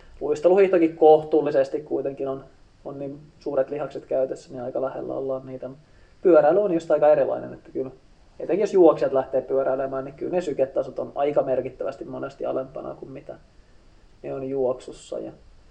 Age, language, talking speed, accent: 20-39, Finnish, 160 wpm, native